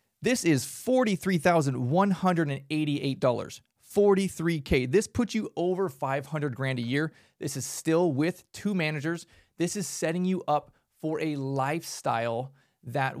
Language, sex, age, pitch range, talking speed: English, male, 30-49, 135-185 Hz, 125 wpm